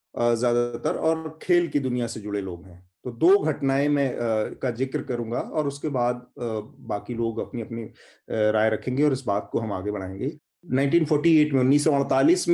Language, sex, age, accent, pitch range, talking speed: Hindi, male, 30-49, native, 115-145 Hz, 180 wpm